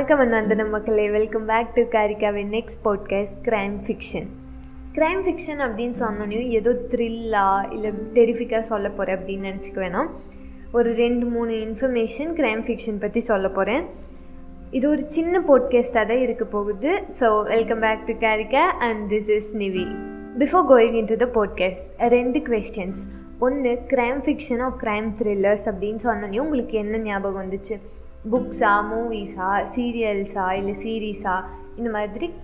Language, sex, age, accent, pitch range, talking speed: Tamil, female, 20-39, native, 200-245 Hz, 70 wpm